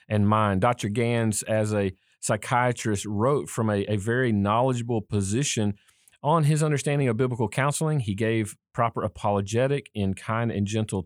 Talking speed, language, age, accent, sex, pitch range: 150 wpm, English, 40-59, American, male, 105-130 Hz